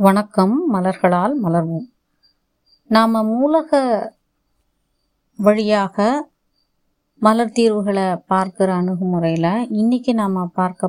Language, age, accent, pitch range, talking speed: Tamil, 20-39, native, 185-235 Hz, 70 wpm